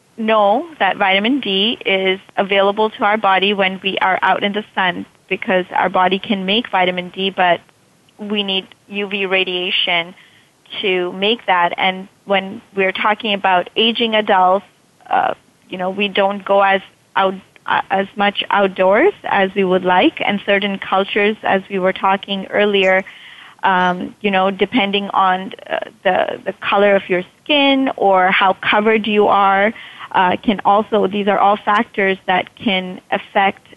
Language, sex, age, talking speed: English, female, 30-49, 155 wpm